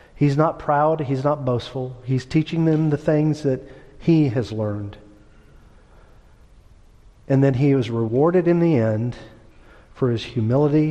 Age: 40-59